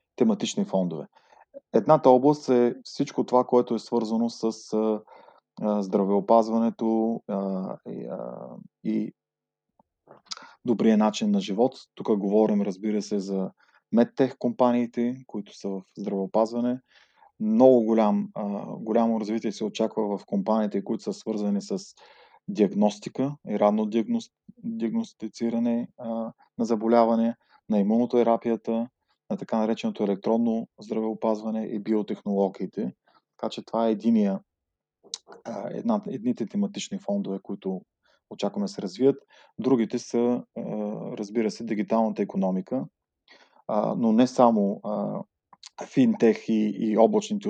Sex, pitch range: male, 105-120 Hz